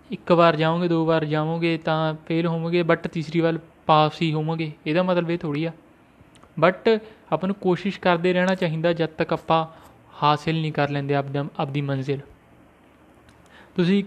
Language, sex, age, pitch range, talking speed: Punjabi, male, 20-39, 155-180 Hz, 160 wpm